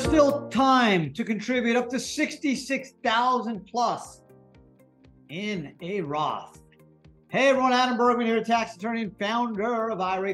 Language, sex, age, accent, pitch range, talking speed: English, male, 40-59, American, 175-235 Hz, 135 wpm